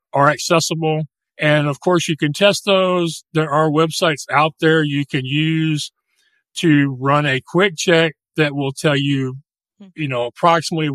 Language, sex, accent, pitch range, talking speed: English, male, American, 140-165 Hz, 160 wpm